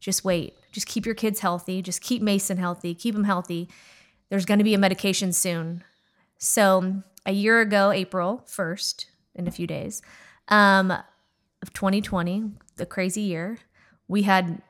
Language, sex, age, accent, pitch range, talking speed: English, female, 20-39, American, 180-205 Hz, 160 wpm